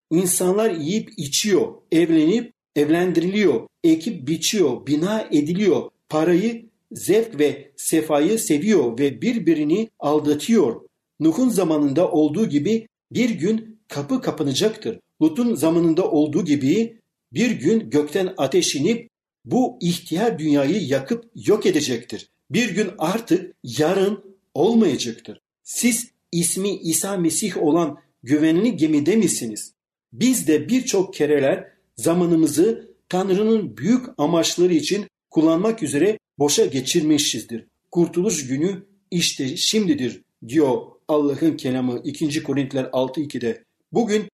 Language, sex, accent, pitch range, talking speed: Turkish, male, native, 150-220 Hz, 105 wpm